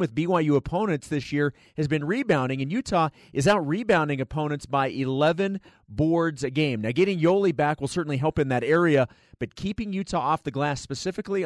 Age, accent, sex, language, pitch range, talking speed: 30-49, American, male, English, 130-165 Hz, 190 wpm